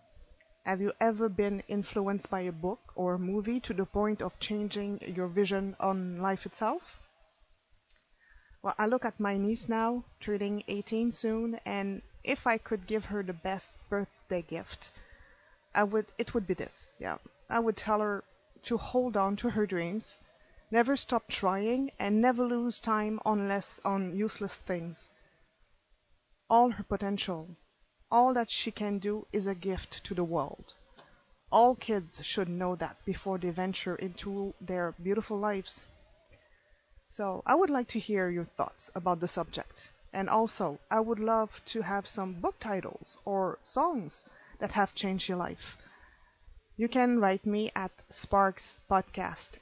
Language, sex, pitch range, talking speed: English, female, 190-225 Hz, 155 wpm